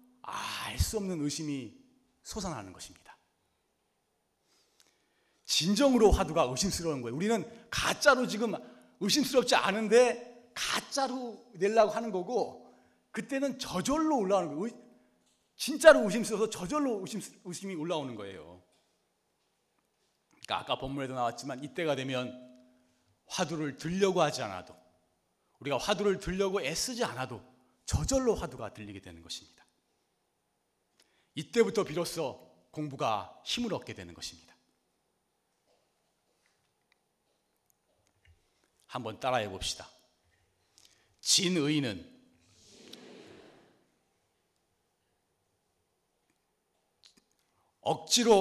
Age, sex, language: 40-59, male, Korean